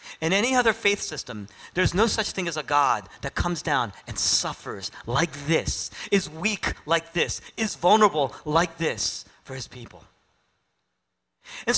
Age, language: 40-59, English